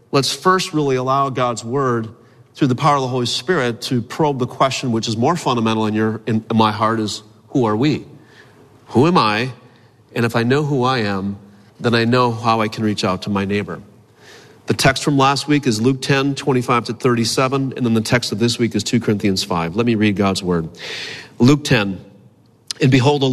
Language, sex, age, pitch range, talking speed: English, male, 40-59, 115-145 Hz, 220 wpm